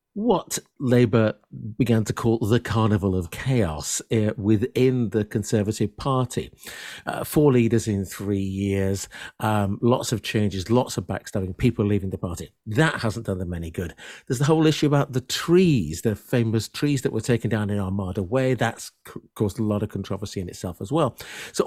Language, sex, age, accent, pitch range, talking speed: English, male, 50-69, British, 105-140 Hz, 180 wpm